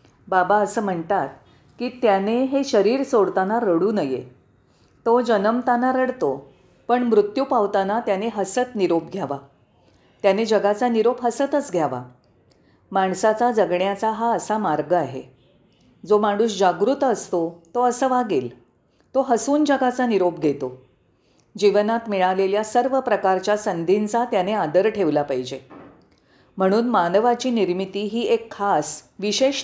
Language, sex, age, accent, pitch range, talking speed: Marathi, female, 40-59, native, 180-240 Hz, 100 wpm